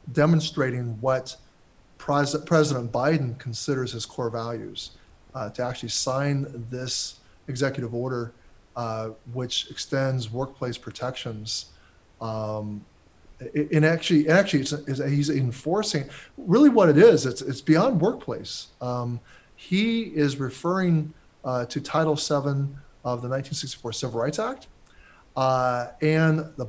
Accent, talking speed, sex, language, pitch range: American, 125 wpm, male, English, 125-160 Hz